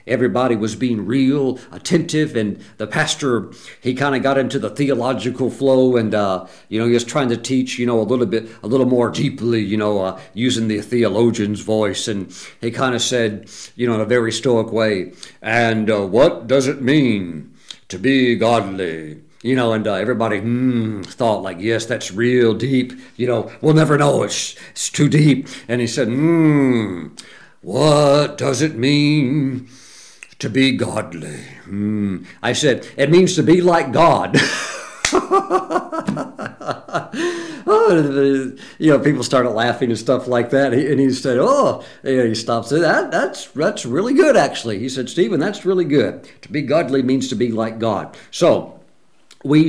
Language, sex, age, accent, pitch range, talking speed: English, male, 50-69, American, 115-140 Hz, 175 wpm